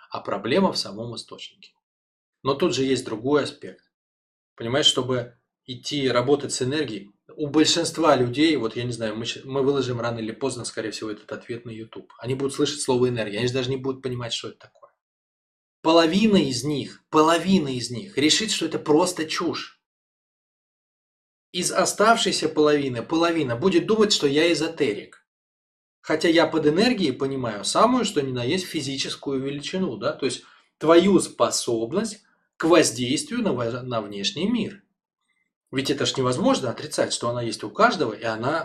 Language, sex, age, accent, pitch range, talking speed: Russian, male, 20-39, native, 125-170 Hz, 160 wpm